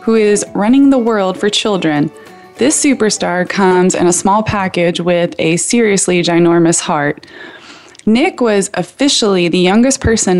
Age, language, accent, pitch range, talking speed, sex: 20-39, English, American, 170-215 Hz, 145 wpm, female